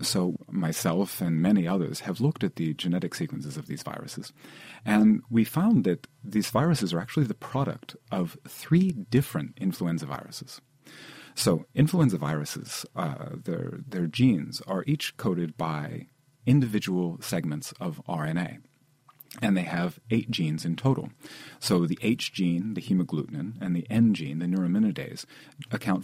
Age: 40-59